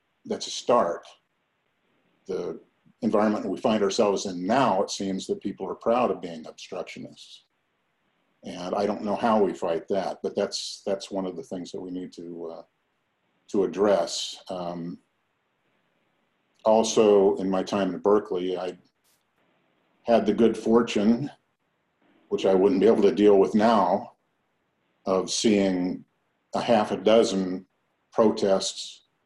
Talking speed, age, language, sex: 145 wpm, 50-69, English, male